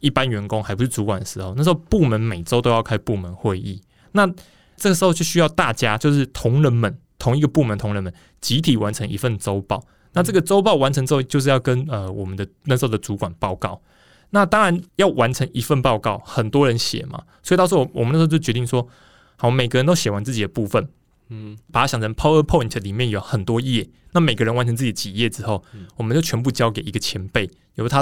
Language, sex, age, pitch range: Chinese, male, 20-39, 110-150 Hz